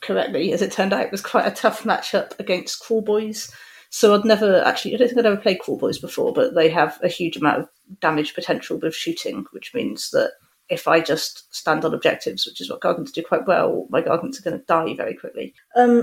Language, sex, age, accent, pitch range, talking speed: English, female, 40-59, British, 185-255 Hz, 235 wpm